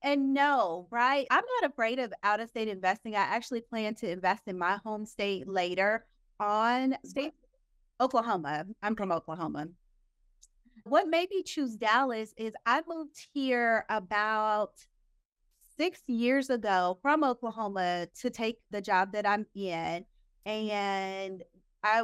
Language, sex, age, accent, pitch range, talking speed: English, female, 30-49, American, 190-235 Hz, 140 wpm